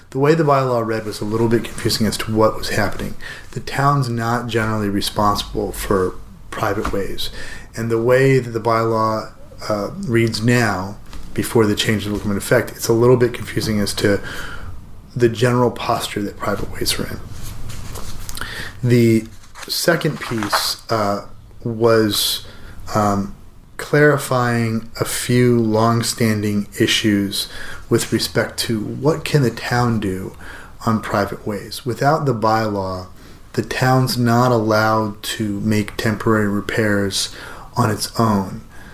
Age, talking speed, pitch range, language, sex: 30-49, 135 wpm, 100-120 Hz, English, male